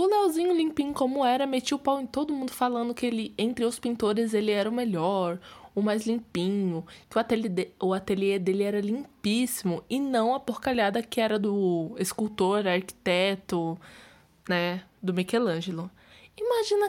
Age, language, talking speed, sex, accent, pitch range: 10-29, Portuguese, 155 wpm, female, Brazilian, 190-240 Hz